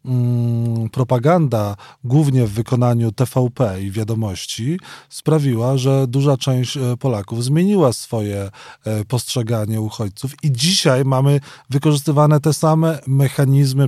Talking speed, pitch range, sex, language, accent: 100 wpm, 125-150 Hz, male, Polish, native